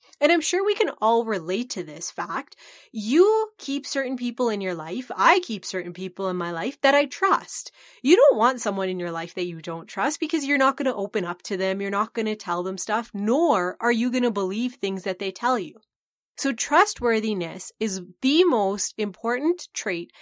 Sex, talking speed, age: female, 215 wpm, 30-49